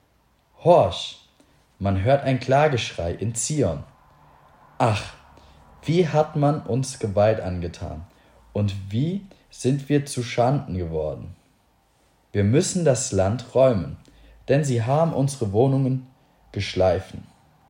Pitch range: 100-135 Hz